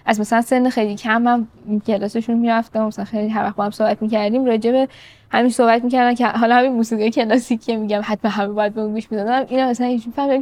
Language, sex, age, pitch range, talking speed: Persian, female, 10-29, 210-245 Hz, 200 wpm